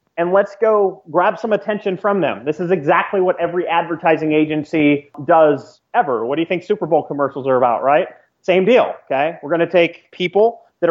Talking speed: 195 wpm